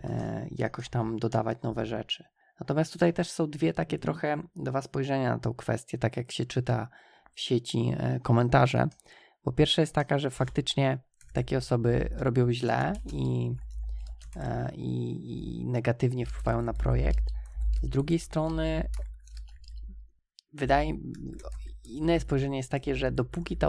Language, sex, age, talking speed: Polish, male, 20-39, 135 wpm